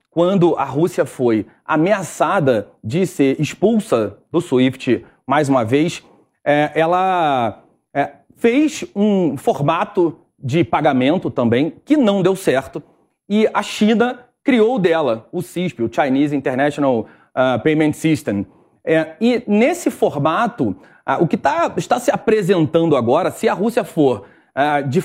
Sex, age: male, 30-49